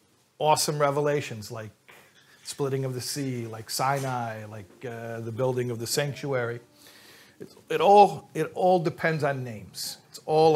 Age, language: 50-69, English